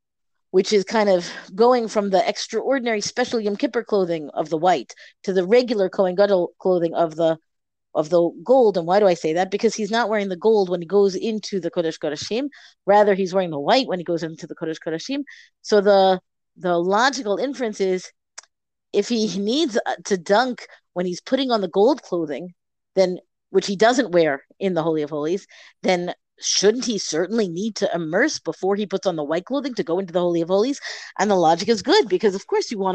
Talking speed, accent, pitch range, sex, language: 210 wpm, American, 175-225 Hz, female, English